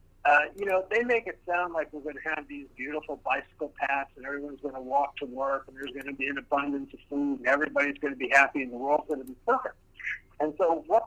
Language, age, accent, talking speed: English, 50-69, American, 260 wpm